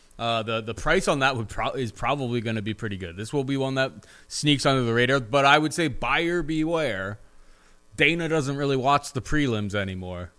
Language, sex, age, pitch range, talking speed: English, male, 20-39, 100-135 Hz, 215 wpm